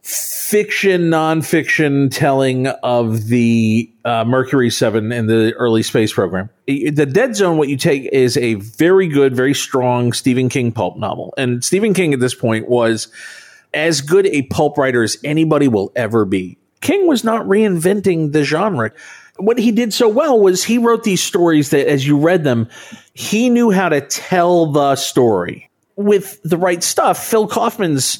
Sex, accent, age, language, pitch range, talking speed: male, American, 40-59, English, 125-175 Hz, 170 wpm